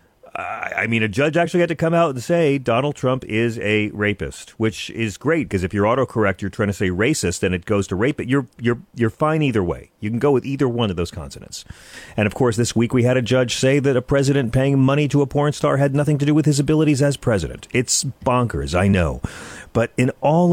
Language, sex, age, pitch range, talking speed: English, male, 40-59, 95-140 Hz, 245 wpm